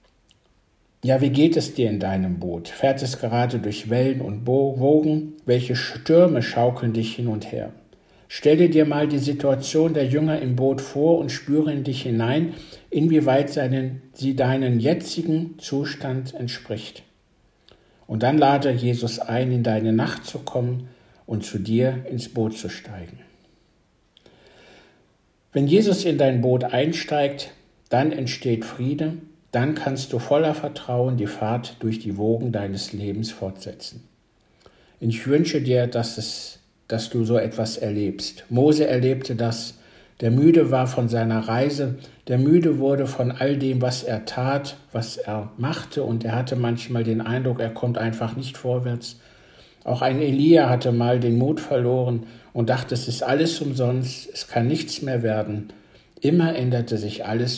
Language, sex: German, male